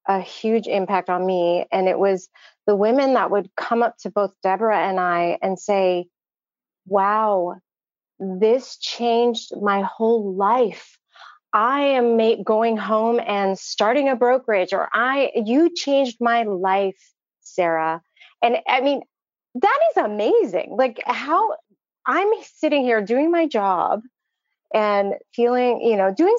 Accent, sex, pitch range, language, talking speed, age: American, female, 195-260 Hz, English, 140 wpm, 30-49